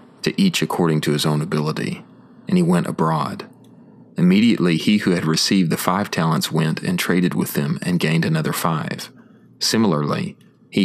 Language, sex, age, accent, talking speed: English, male, 30-49, American, 165 wpm